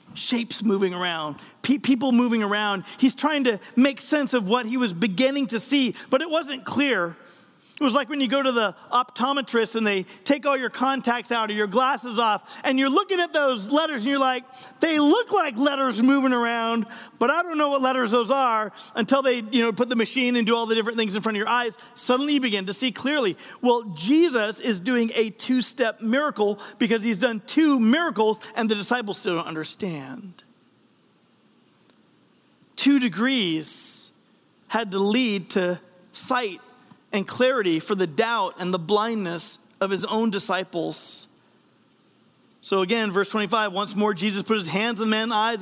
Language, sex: English, male